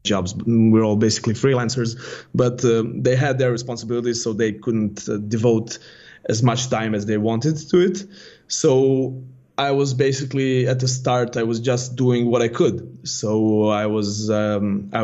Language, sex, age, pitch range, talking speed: English, male, 20-39, 110-125 Hz, 170 wpm